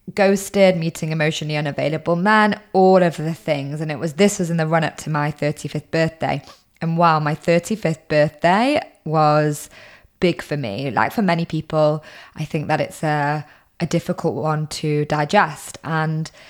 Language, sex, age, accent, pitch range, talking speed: English, female, 20-39, British, 155-195 Hz, 165 wpm